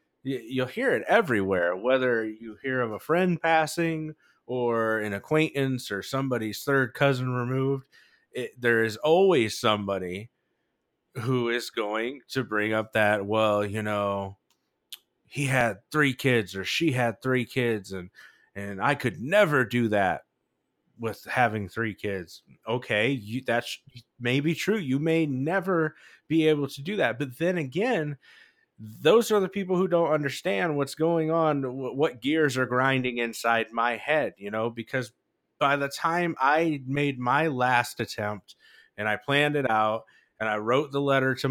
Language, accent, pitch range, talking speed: English, American, 115-155 Hz, 155 wpm